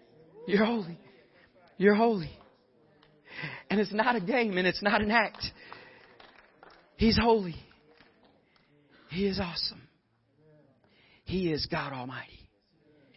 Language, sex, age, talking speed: English, male, 40-59, 105 wpm